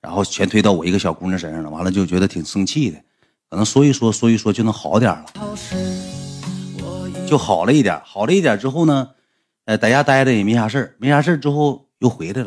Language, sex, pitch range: Chinese, male, 105-155 Hz